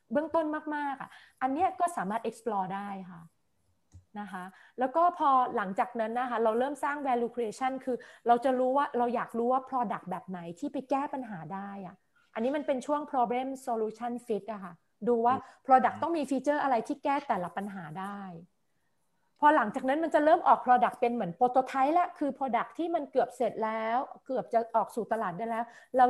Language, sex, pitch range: Thai, female, 220-270 Hz